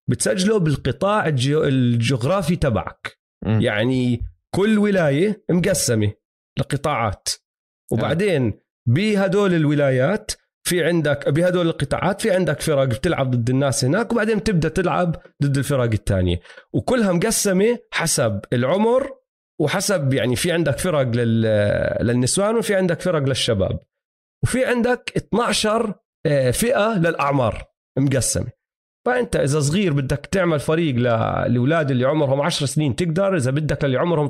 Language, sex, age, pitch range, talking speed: Arabic, male, 40-59, 125-185 Hz, 115 wpm